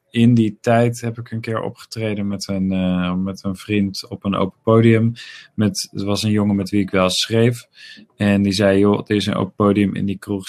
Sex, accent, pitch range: male, Dutch, 95-115 Hz